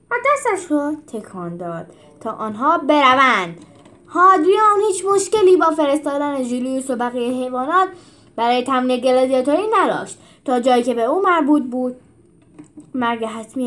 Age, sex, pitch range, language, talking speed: 10-29, female, 255-370 Hz, Persian, 130 wpm